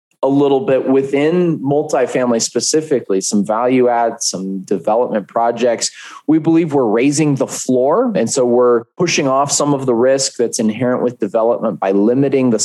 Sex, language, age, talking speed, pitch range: male, English, 20-39, 160 wpm, 115-145 Hz